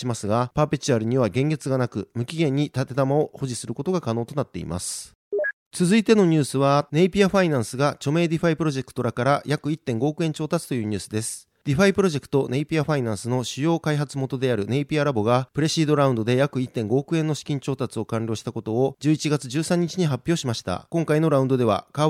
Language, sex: Japanese, male